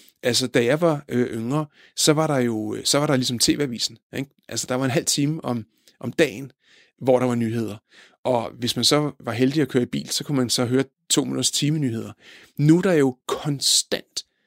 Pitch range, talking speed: 130-160 Hz, 210 wpm